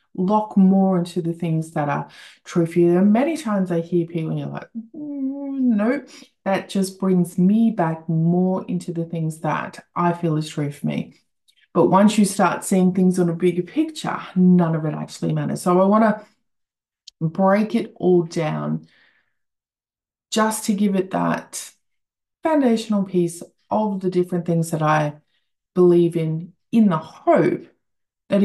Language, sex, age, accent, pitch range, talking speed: English, female, 20-39, Australian, 165-205 Hz, 160 wpm